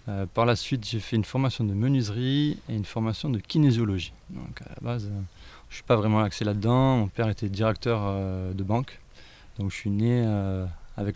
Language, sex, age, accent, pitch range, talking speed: French, male, 20-39, French, 100-115 Hz, 215 wpm